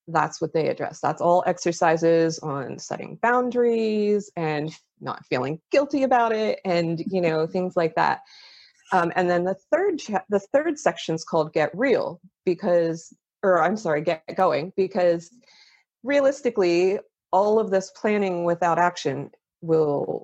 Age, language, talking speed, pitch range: 30-49, English, 145 wpm, 165-225 Hz